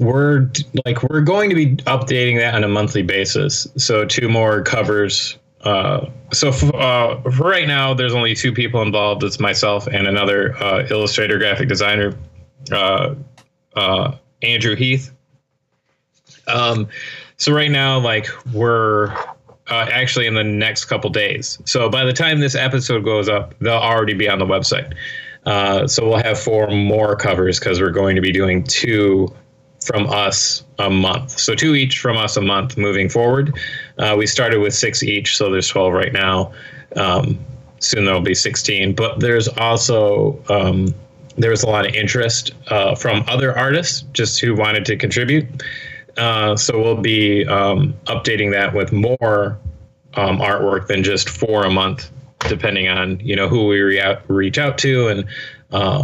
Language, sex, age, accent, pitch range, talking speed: English, male, 20-39, American, 105-130 Hz, 165 wpm